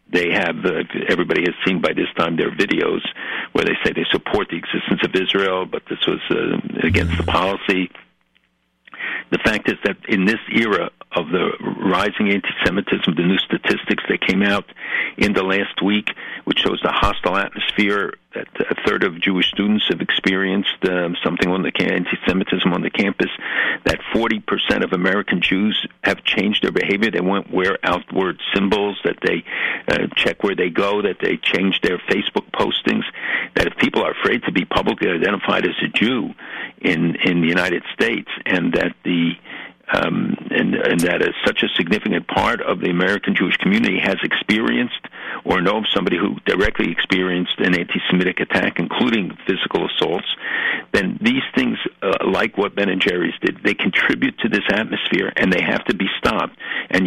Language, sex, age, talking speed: English, male, 60-79, 175 wpm